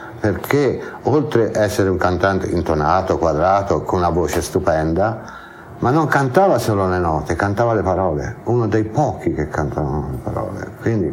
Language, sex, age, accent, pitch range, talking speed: Italian, male, 60-79, native, 90-110 Hz, 155 wpm